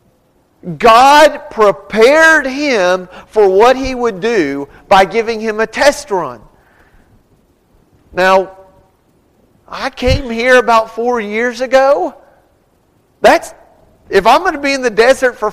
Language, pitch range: English, 175-250 Hz